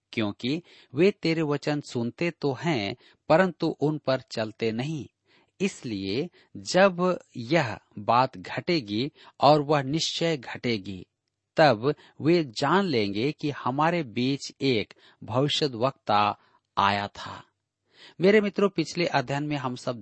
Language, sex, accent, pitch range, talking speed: Hindi, male, native, 115-155 Hz, 115 wpm